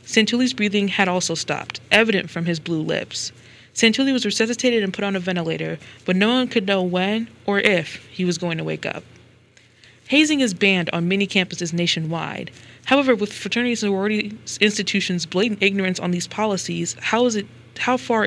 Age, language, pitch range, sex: 20-39, English, 165-215 Hz, female